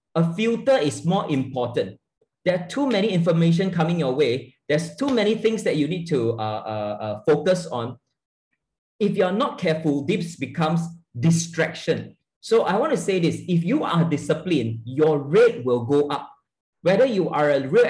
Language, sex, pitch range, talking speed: English, male, 145-195 Hz, 180 wpm